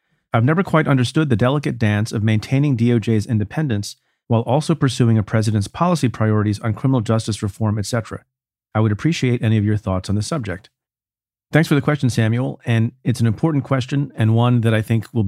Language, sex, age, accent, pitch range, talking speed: English, male, 40-59, American, 105-130 Hz, 195 wpm